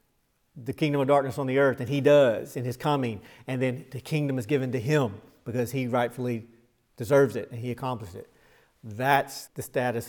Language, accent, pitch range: English, American, 125-155 Hz